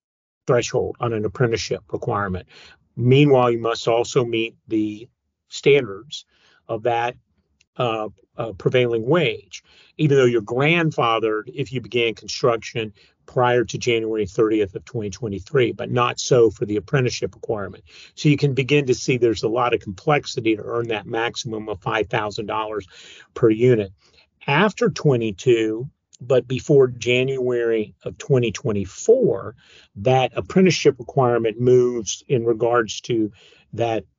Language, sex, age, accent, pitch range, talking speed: English, male, 50-69, American, 110-130 Hz, 130 wpm